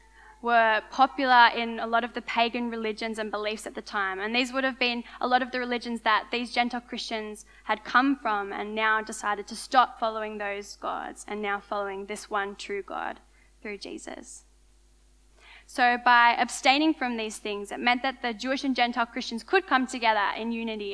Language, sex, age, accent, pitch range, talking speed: English, female, 10-29, Australian, 215-255 Hz, 190 wpm